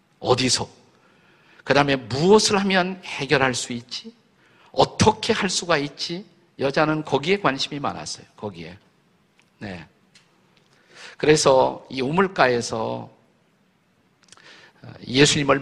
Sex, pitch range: male, 125-180 Hz